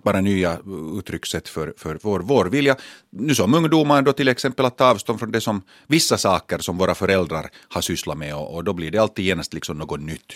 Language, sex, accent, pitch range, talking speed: Finnish, male, native, 90-115 Hz, 220 wpm